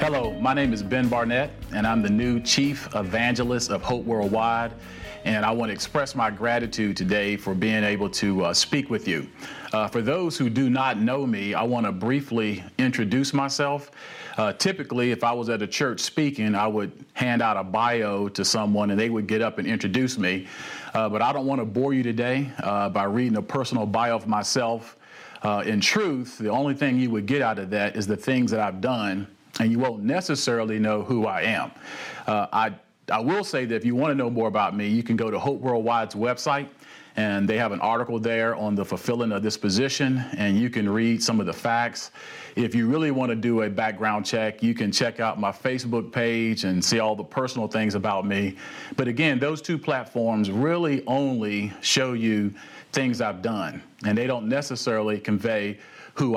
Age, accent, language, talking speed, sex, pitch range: 40-59, American, English, 210 wpm, male, 105-125 Hz